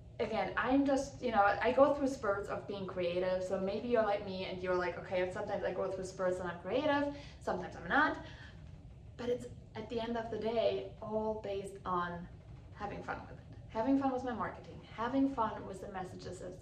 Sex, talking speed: female, 210 wpm